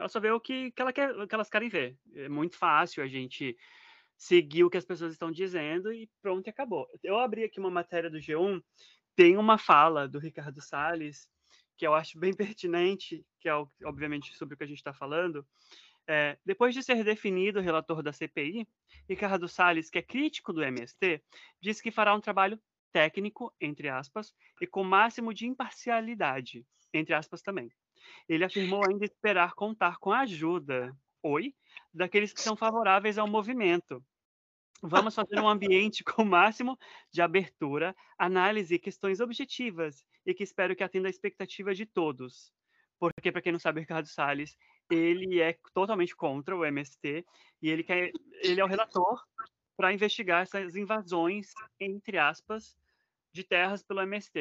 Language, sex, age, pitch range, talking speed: Portuguese, male, 20-39, 160-215 Hz, 170 wpm